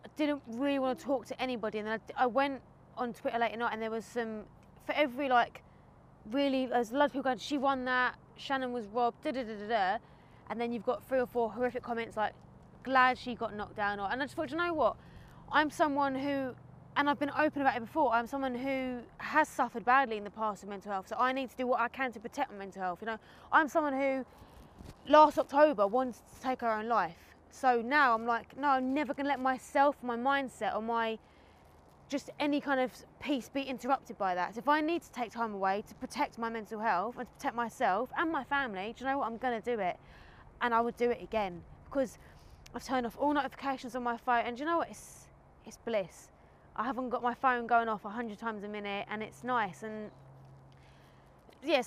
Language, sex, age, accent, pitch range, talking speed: English, female, 20-39, British, 230-275 Hz, 230 wpm